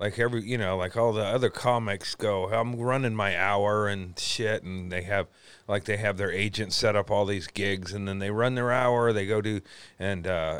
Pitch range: 95-120 Hz